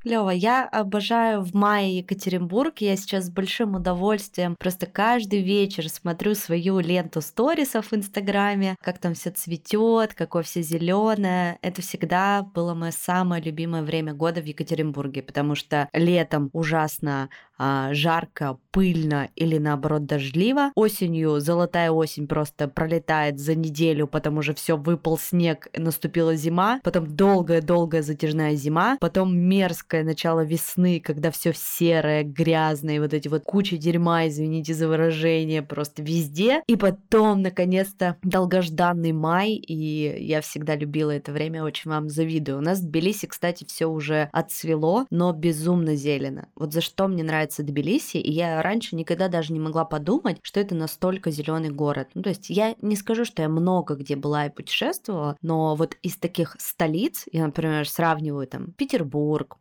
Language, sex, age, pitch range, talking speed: Russian, female, 20-39, 155-190 Hz, 150 wpm